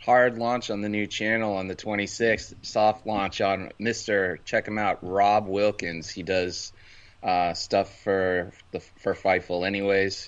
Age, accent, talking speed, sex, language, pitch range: 20-39, American, 160 wpm, male, English, 85-100 Hz